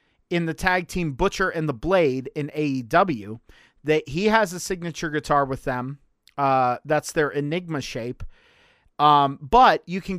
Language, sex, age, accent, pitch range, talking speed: English, male, 40-59, American, 145-185 Hz, 160 wpm